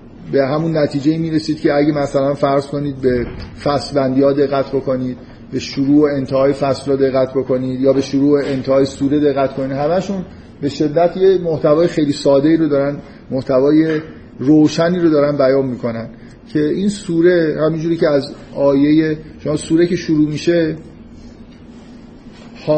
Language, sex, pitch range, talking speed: Persian, male, 135-155 Hz, 160 wpm